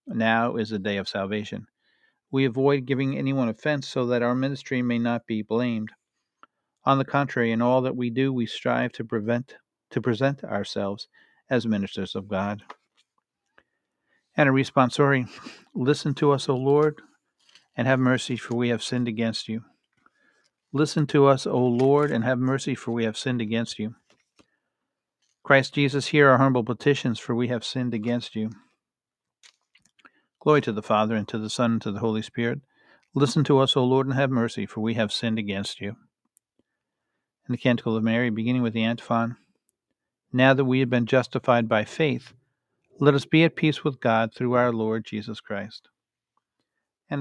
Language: English